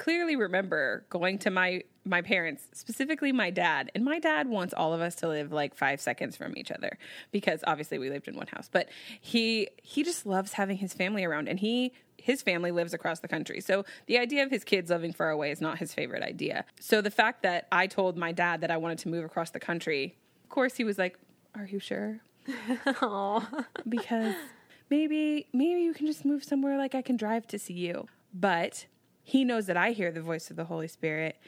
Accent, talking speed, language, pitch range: American, 215 wpm, English, 170-245 Hz